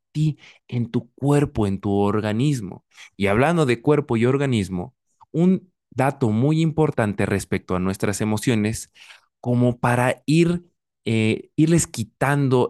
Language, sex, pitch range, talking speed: Spanish, male, 105-150 Hz, 125 wpm